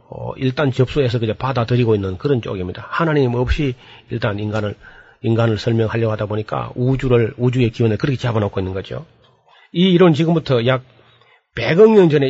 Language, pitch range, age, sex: Korean, 115-155 Hz, 40-59, male